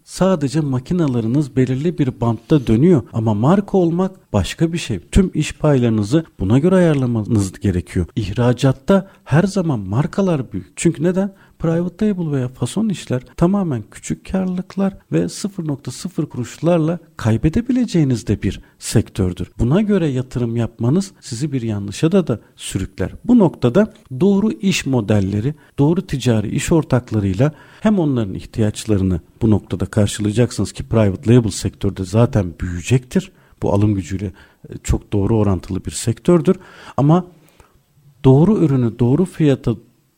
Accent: native